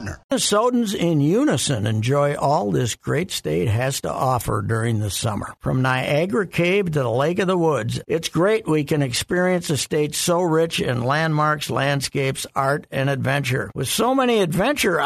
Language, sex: English, male